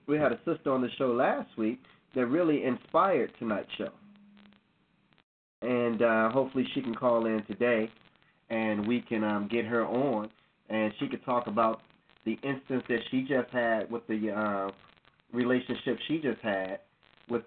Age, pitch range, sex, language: 30-49, 115-150 Hz, male, English